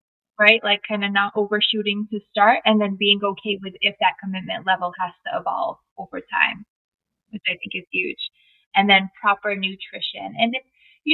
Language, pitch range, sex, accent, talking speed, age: English, 200-235 Hz, female, American, 185 wpm, 20-39